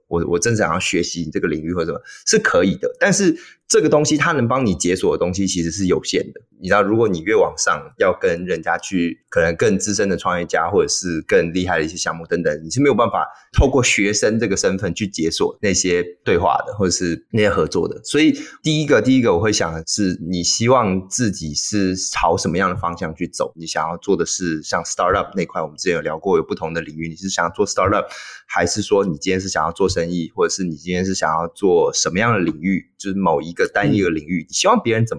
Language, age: Chinese, 20-39